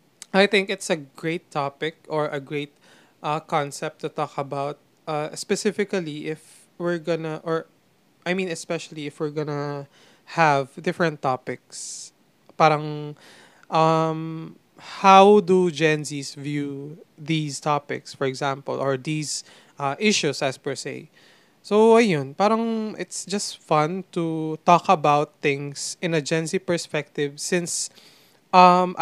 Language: Filipino